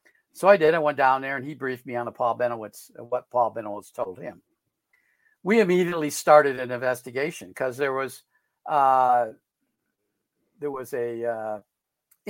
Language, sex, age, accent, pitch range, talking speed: English, male, 60-79, American, 120-150 Hz, 150 wpm